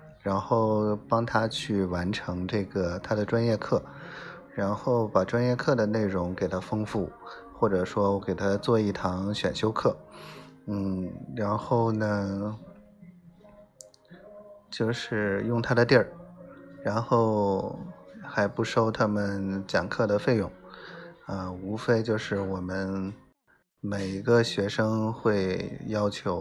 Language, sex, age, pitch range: Chinese, male, 20-39, 95-115 Hz